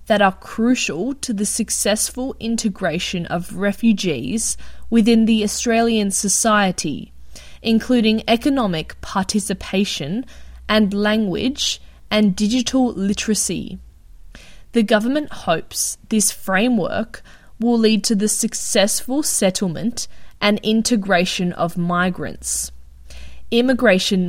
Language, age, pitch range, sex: English, 20-39, 185-225 Hz, female